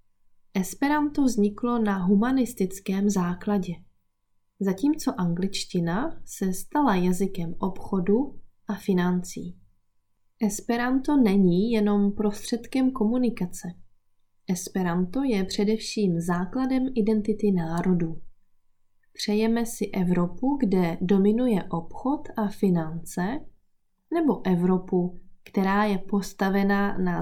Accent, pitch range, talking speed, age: native, 175-215 Hz, 85 wpm, 20-39